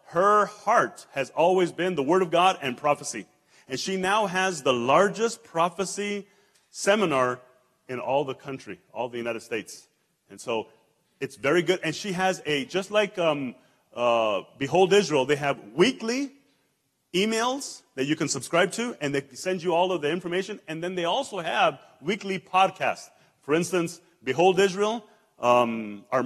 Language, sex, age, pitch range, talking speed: English, male, 30-49, 135-180 Hz, 160 wpm